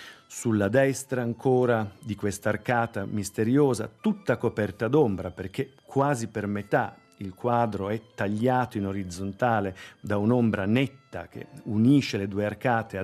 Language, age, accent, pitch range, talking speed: Italian, 40-59, native, 100-125 Hz, 130 wpm